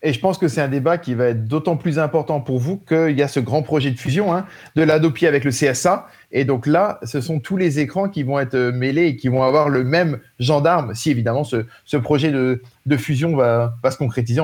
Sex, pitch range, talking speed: male, 130-165 Hz, 250 wpm